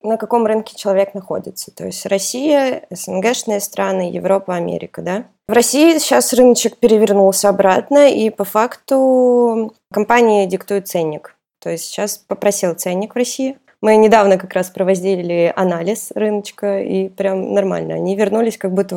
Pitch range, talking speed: 185-220 Hz, 145 wpm